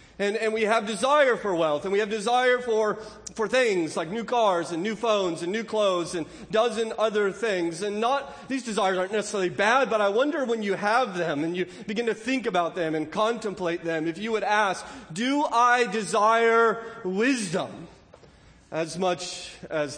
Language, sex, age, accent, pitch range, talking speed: English, male, 40-59, American, 140-215 Hz, 185 wpm